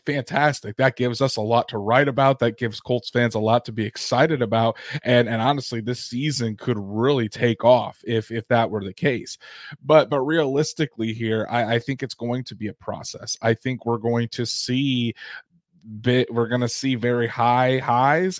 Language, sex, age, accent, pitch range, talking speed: English, male, 20-39, American, 115-130 Hz, 200 wpm